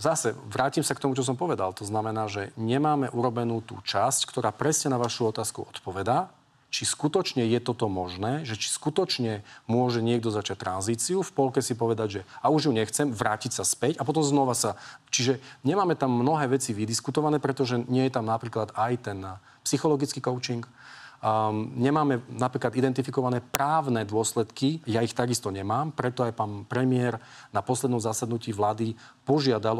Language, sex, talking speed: Slovak, male, 165 wpm